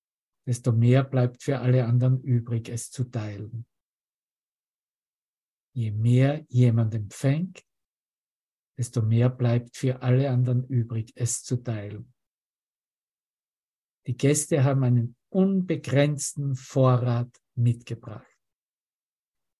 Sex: male